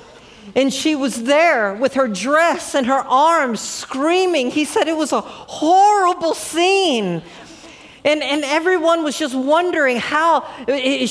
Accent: American